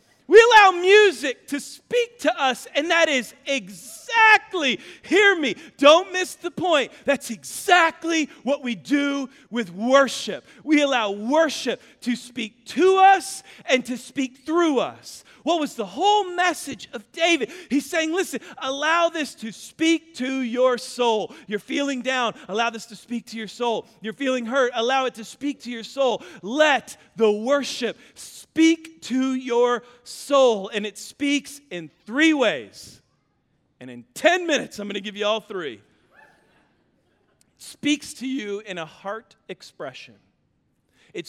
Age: 40-59